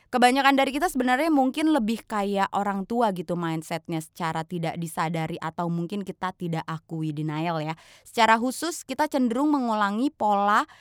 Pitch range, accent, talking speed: 185-260 Hz, native, 150 wpm